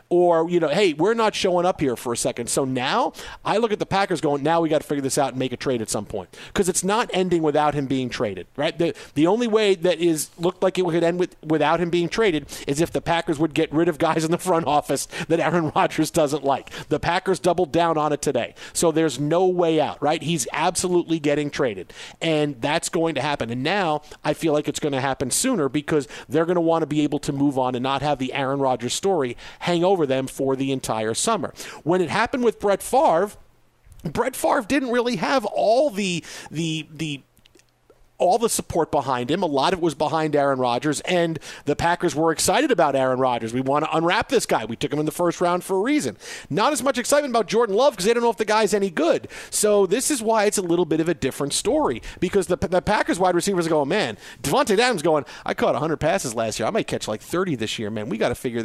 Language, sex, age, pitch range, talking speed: English, male, 50-69, 145-180 Hz, 250 wpm